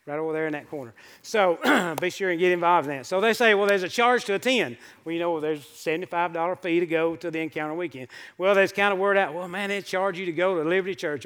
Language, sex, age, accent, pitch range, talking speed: English, male, 40-59, American, 165-210 Hz, 275 wpm